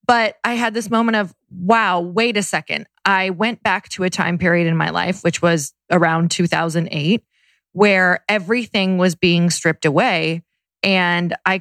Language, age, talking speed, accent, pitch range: English, 30-49, 165 wpm, American, 170-205 Hz